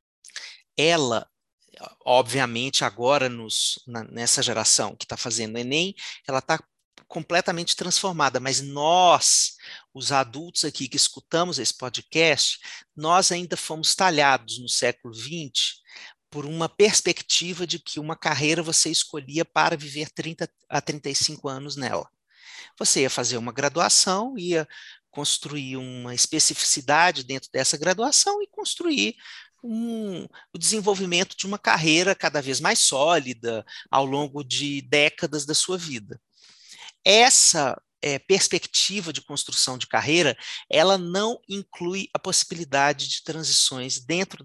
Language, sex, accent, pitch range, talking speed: Portuguese, male, Brazilian, 135-175 Hz, 125 wpm